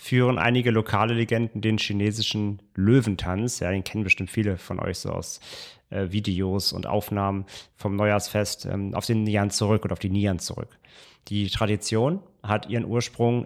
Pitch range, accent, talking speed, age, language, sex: 100-120 Hz, German, 165 wpm, 30-49, German, male